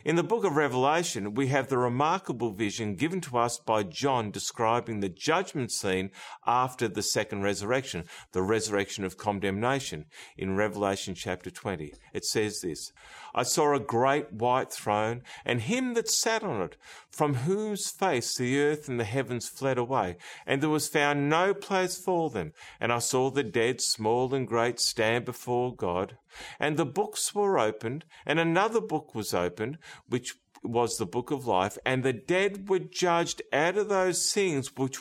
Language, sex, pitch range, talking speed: English, male, 115-170 Hz, 175 wpm